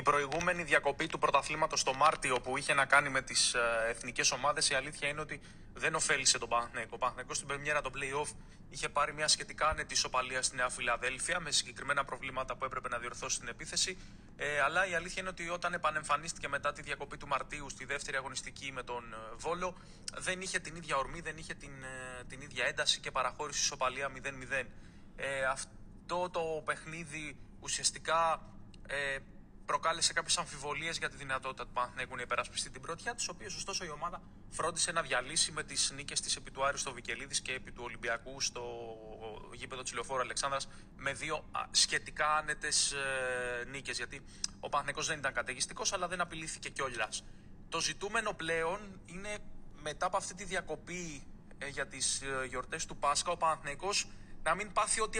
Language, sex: Greek, male